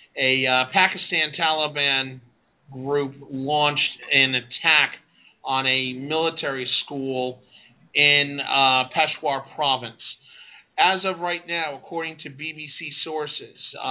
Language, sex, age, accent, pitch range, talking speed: English, male, 30-49, American, 140-165 Hz, 105 wpm